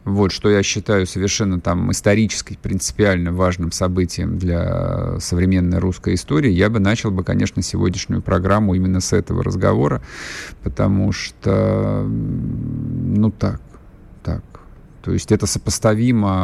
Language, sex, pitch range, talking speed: Russian, male, 95-120 Hz, 125 wpm